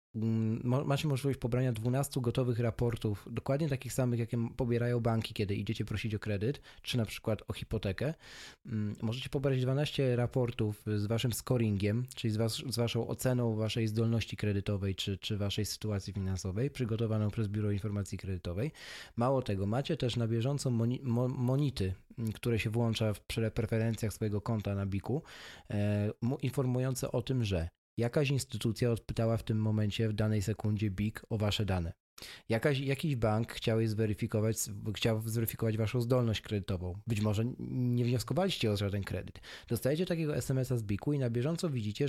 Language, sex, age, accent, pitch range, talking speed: Polish, male, 20-39, native, 110-130 Hz, 155 wpm